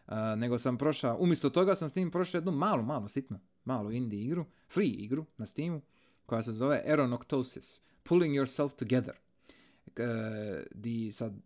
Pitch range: 115-165 Hz